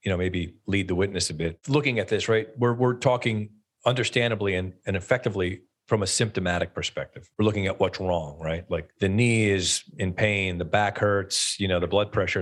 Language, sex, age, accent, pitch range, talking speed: English, male, 40-59, American, 90-120 Hz, 210 wpm